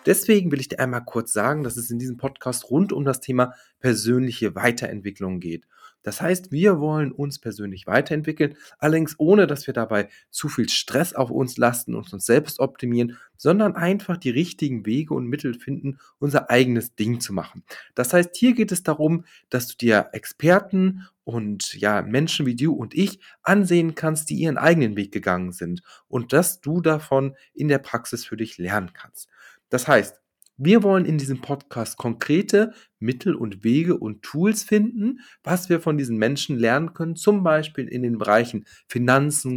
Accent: German